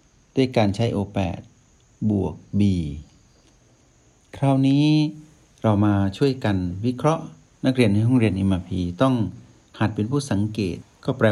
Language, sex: Thai, male